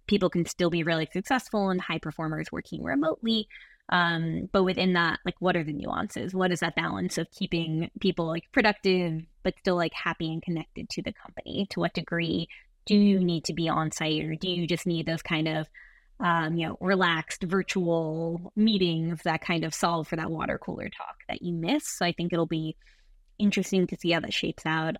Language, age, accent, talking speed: English, 20-39, American, 205 wpm